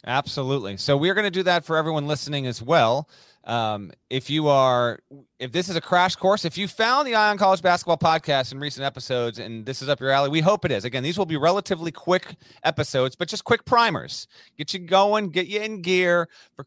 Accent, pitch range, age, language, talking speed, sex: American, 130-180 Hz, 30-49, English, 225 wpm, male